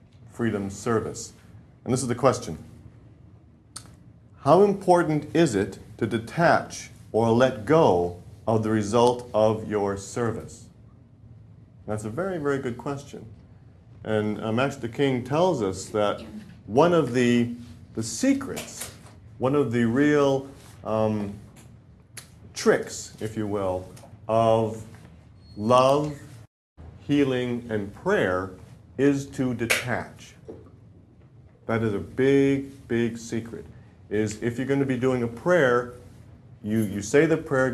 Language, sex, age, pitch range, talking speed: English, male, 40-59, 110-135 Hz, 120 wpm